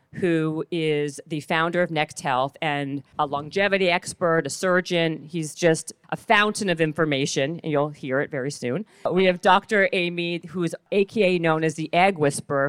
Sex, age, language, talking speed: female, 40-59, English, 175 wpm